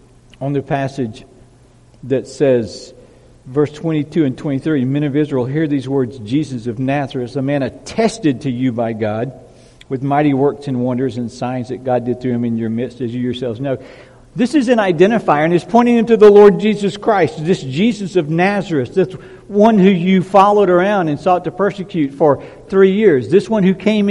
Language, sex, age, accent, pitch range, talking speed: English, male, 60-79, American, 135-195 Hz, 195 wpm